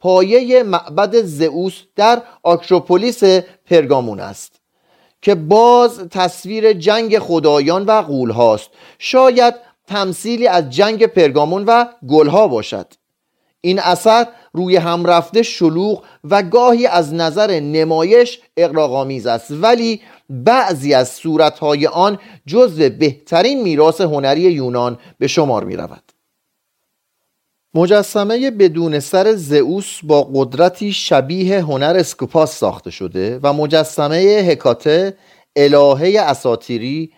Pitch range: 145-205 Hz